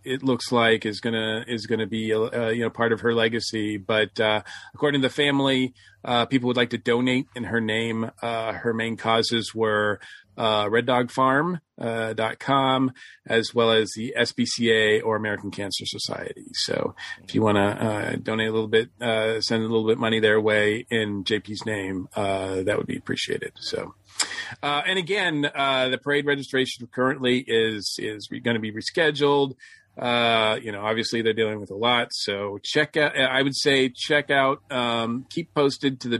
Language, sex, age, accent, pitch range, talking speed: English, male, 40-59, American, 110-135 Hz, 190 wpm